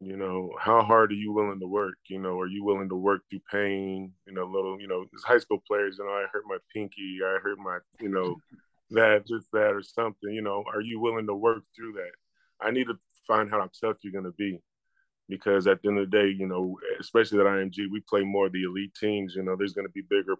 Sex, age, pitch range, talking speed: male, 20-39, 100-120 Hz, 260 wpm